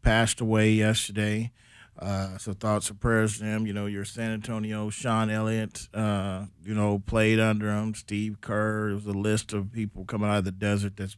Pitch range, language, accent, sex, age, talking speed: 100-115 Hz, English, American, male, 40-59, 195 wpm